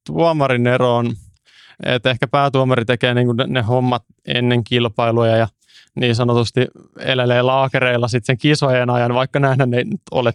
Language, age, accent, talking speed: Finnish, 20-39, native, 145 wpm